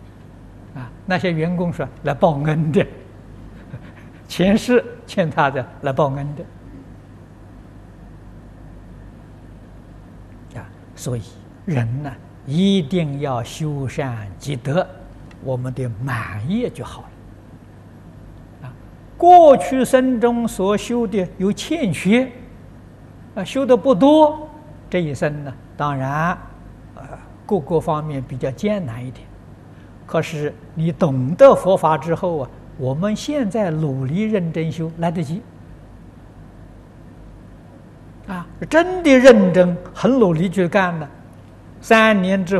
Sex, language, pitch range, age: male, Chinese, 110-180 Hz, 60-79